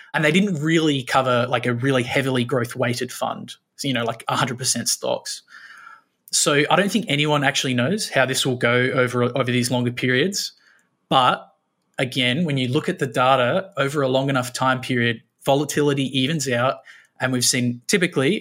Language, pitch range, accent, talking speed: English, 125-145 Hz, Australian, 180 wpm